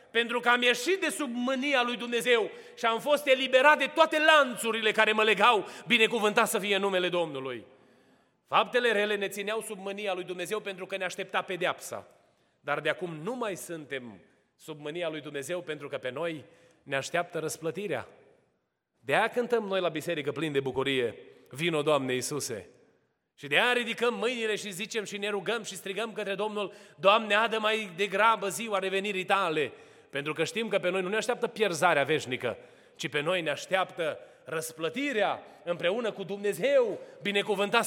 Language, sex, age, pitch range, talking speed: Romanian, male, 30-49, 180-235 Hz, 170 wpm